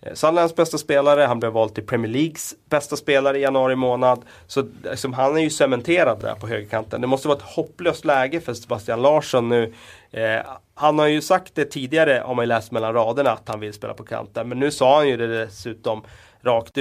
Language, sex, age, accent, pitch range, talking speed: Swedish, male, 30-49, native, 110-135 Hz, 210 wpm